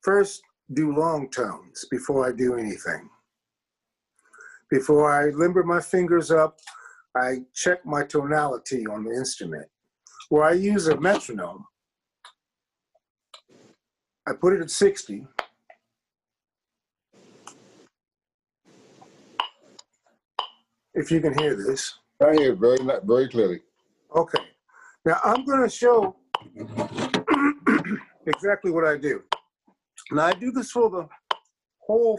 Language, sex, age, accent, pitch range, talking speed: English, male, 50-69, American, 150-220 Hz, 105 wpm